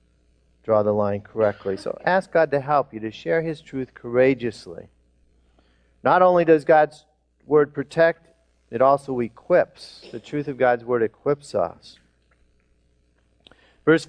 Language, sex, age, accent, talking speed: English, male, 40-59, American, 135 wpm